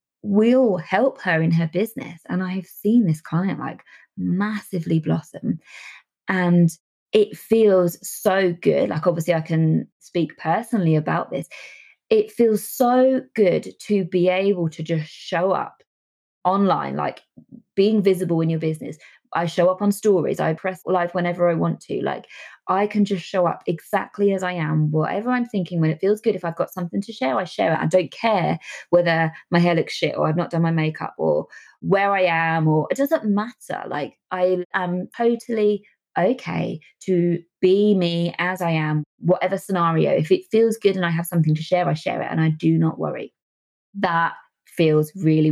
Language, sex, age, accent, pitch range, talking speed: English, female, 20-39, British, 165-210 Hz, 185 wpm